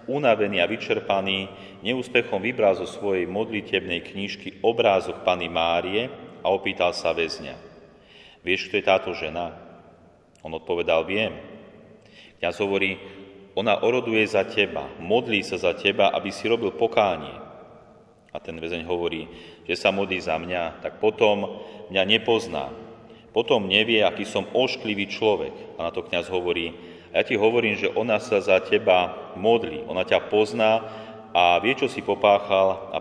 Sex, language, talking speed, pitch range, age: male, Slovak, 145 wpm, 85-105 Hz, 30-49